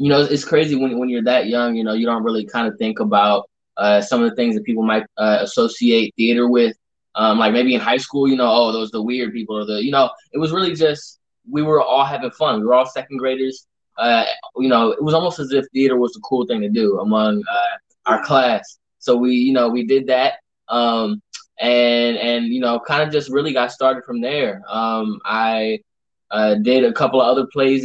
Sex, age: male, 10-29